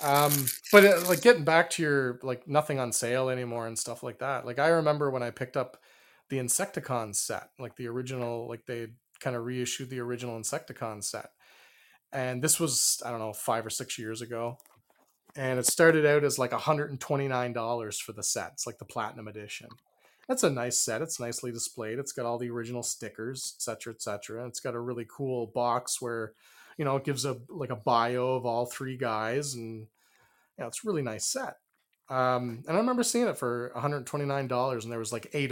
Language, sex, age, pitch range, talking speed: English, male, 30-49, 115-140 Hz, 205 wpm